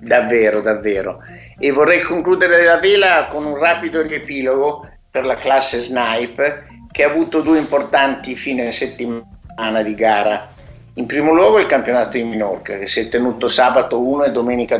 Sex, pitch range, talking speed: male, 115-150 Hz, 160 wpm